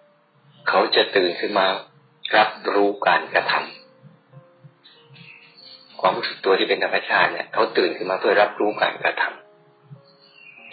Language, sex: Thai, male